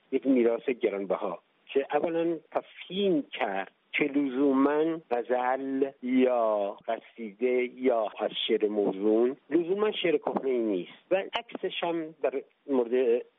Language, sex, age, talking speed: Persian, male, 50-69, 110 wpm